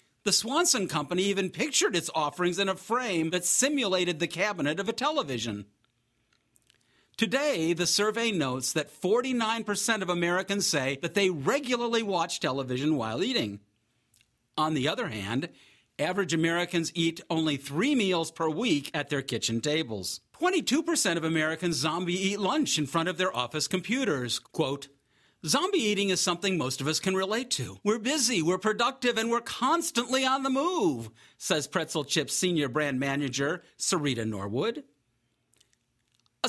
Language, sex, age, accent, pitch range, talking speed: English, male, 50-69, American, 145-230 Hz, 150 wpm